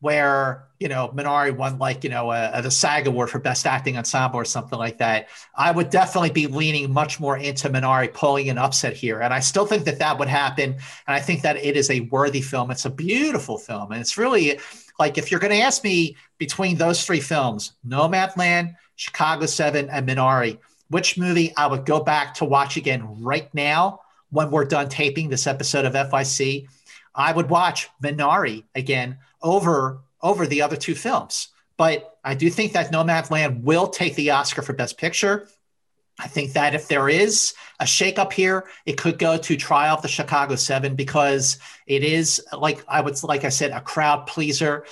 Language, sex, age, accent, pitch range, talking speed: English, male, 50-69, American, 135-160 Hz, 190 wpm